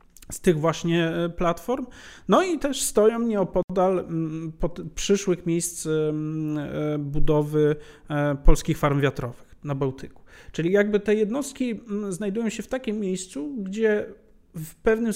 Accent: native